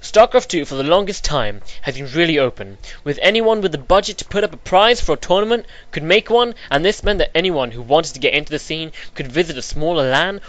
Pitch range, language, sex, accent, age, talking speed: 135-190 Hz, English, male, British, 10-29, 245 wpm